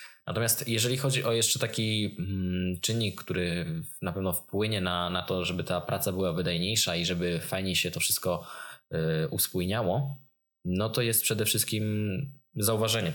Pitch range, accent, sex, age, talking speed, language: 90-115 Hz, native, male, 20-39, 150 wpm, Polish